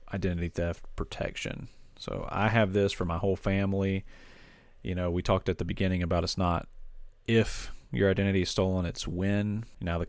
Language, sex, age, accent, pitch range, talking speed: English, male, 40-59, American, 85-95 Hz, 180 wpm